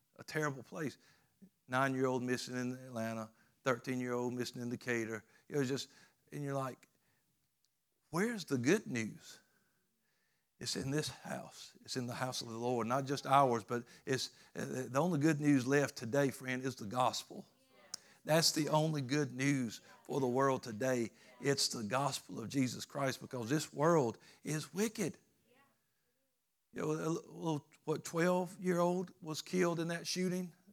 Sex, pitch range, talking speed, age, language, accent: male, 130-180 Hz, 155 wpm, 60-79, English, American